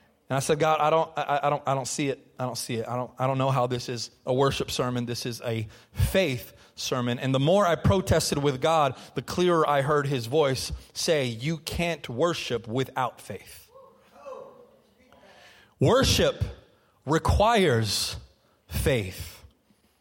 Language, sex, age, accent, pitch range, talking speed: English, male, 30-49, American, 130-190 Hz, 165 wpm